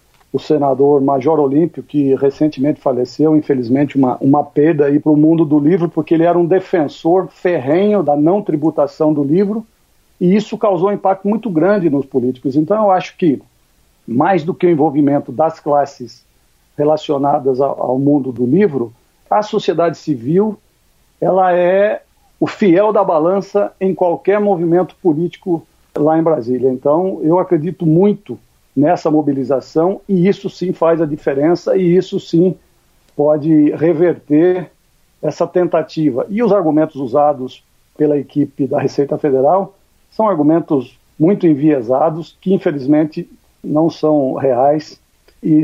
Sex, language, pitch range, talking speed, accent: male, Portuguese, 145-180 Hz, 140 wpm, Brazilian